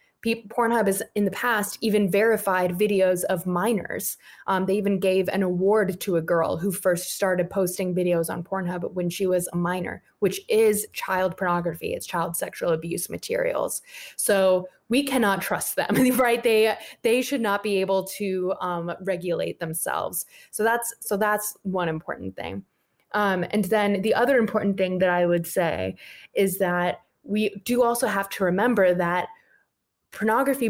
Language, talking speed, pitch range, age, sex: English, 165 wpm, 185-220 Hz, 20-39, female